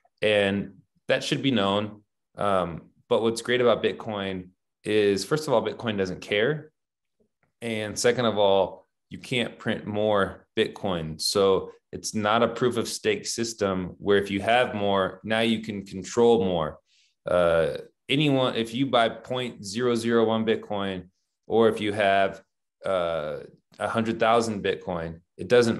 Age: 20-39